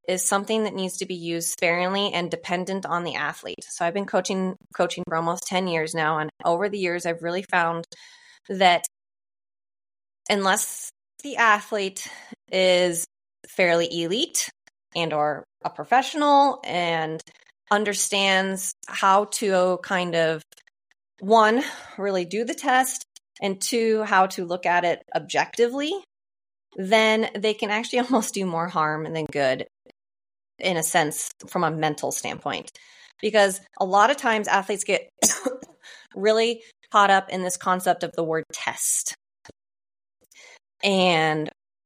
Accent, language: American, English